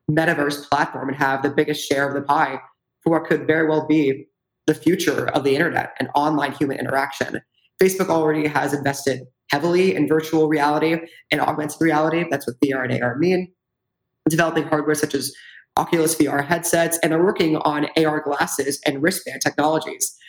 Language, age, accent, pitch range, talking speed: English, 20-39, American, 145-165 Hz, 170 wpm